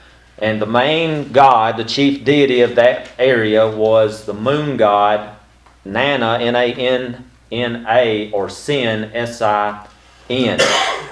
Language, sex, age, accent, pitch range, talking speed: English, male, 40-59, American, 110-135 Hz, 105 wpm